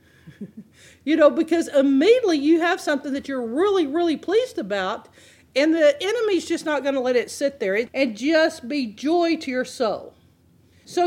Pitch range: 245-325 Hz